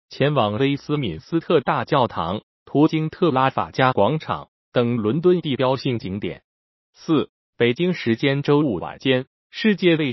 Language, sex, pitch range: Chinese, male, 120-150 Hz